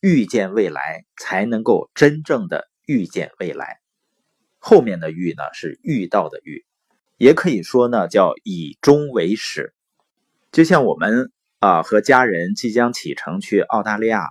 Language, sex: Chinese, male